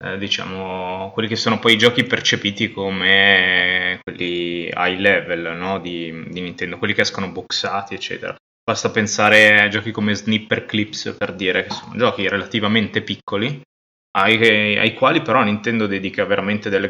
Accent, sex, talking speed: native, male, 155 wpm